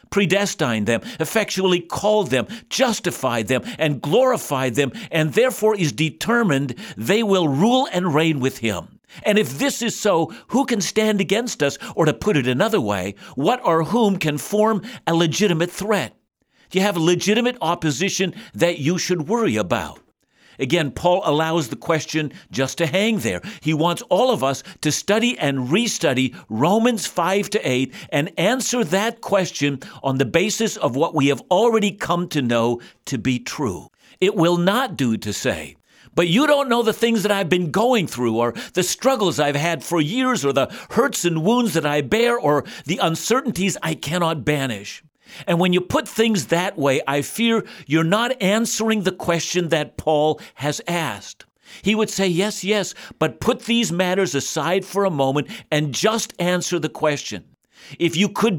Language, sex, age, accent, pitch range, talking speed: English, male, 50-69, American, 150-210 Hz, 175 wpm